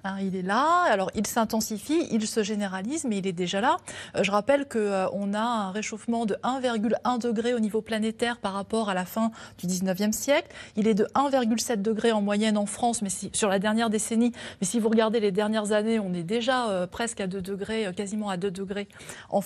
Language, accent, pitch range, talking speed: French, French, 210-270 Hz, 215 wpm